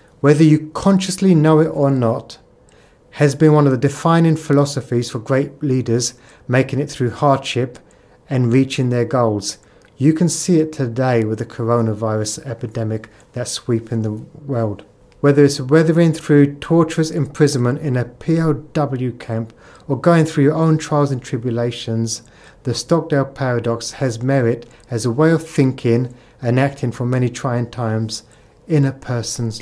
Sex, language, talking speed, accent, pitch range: male, English, 150 wpm, British, 115-140 Hz